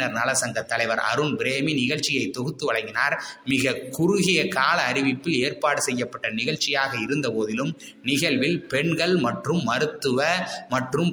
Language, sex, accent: Tamil, male, native